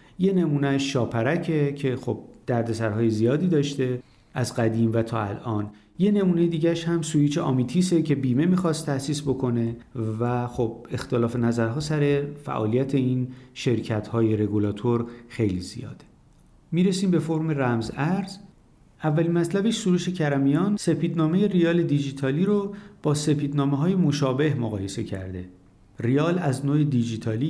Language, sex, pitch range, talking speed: Persian, male, 115-160 Hz, 130 wpm